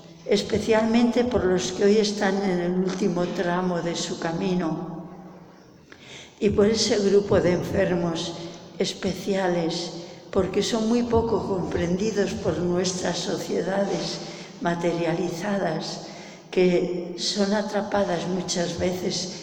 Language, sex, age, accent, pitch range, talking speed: English, female, 60-79, Spanish, 175-205 Hz, 105 wpm